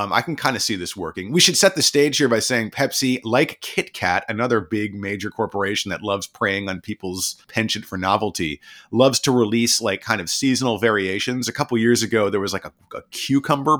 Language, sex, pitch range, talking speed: English, male, 105-135 Hz, 215 wpm